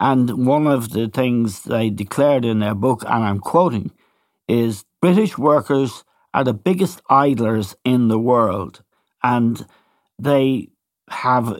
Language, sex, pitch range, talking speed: English, male, 110-140 Hz, 135 wpm